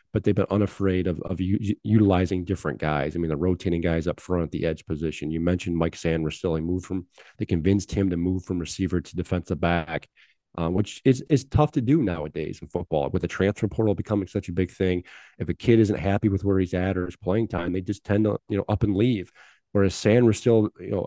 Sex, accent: male, American